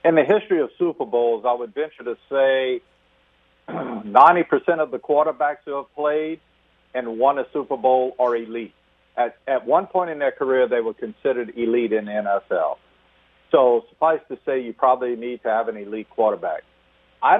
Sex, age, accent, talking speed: male, 50-69, American, 180 wpm